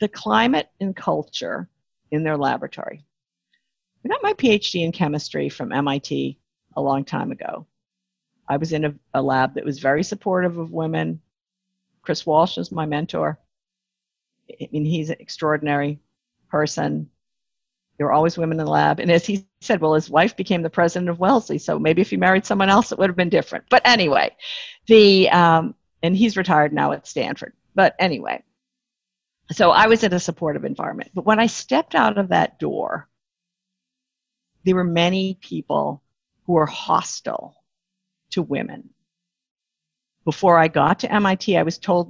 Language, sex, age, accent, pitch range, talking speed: English, female, 50-69, American, 155-210 Hz, 165 wpm